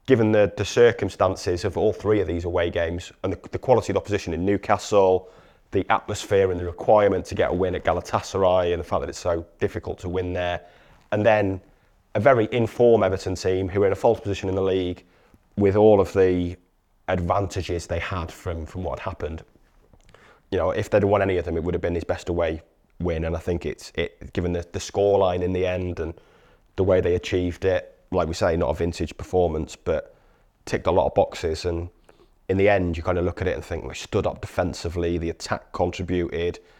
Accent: British